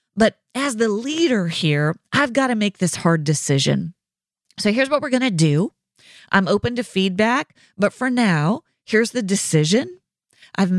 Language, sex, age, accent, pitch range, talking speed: English, female, 40-59, American, 170-250 Hz, 165 wpm